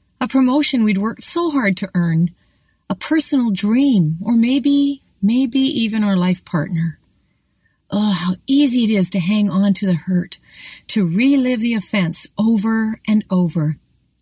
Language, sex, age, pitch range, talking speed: English, female, 40-59, 180-235 Hz, 150 wpm